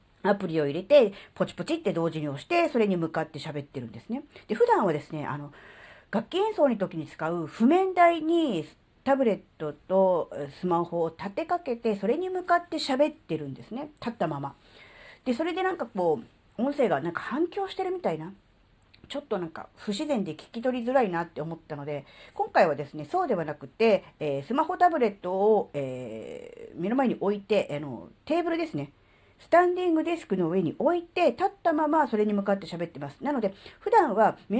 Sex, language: female, Japanese